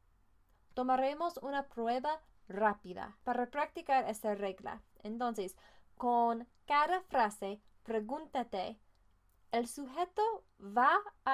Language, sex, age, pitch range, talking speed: Spanish, female, 20-39, 180-275 Hz, 90 wpm